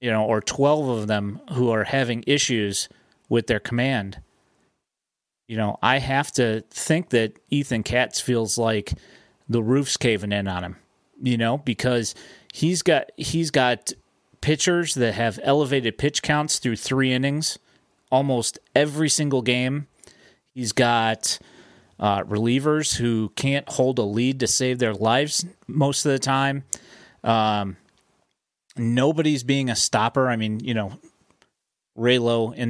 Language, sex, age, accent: English, male, 30-49, American